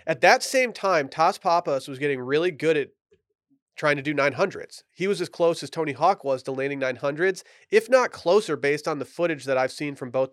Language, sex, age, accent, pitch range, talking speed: English, male, 30-49, American, 135-175 Hz, 220 wpm